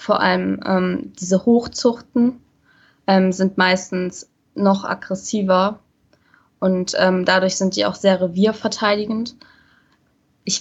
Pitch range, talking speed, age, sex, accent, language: 185-205 Hz, 105 wpm, 20-39, female, German, German